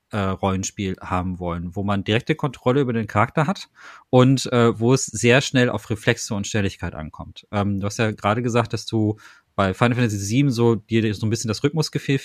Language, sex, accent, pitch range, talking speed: German, male, German, 110-135 Hz, 200 wpm